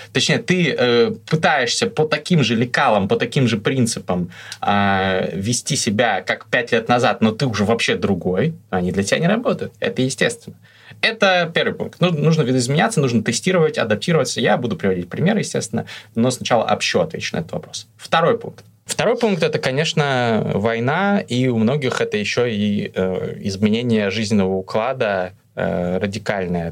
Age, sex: 20-39, male